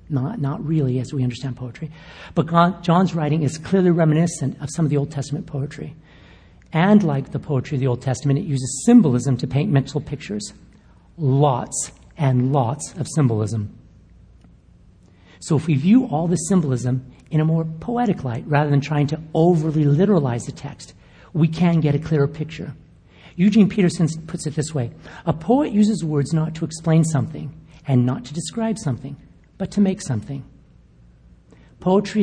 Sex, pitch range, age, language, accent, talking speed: male, 135-165 Hz, 50-69, English, American, 170 wpm